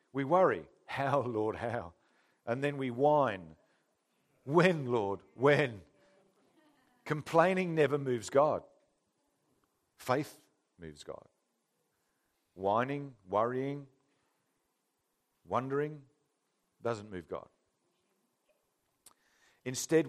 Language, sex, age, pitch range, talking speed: English, male, 50-69, 110-145 Hz, 80 wpm